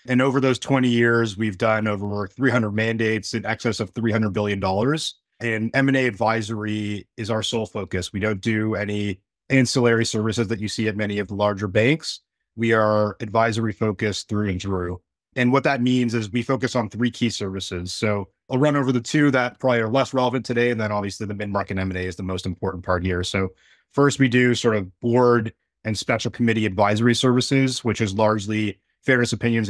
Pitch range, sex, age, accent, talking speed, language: 100-120 Hz, male, 30-49, American, 195 wpm, English